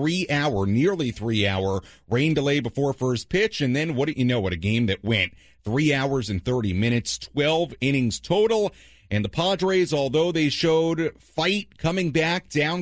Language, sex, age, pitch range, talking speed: English, male, 40-59, 105-150 Hz, 180 wpm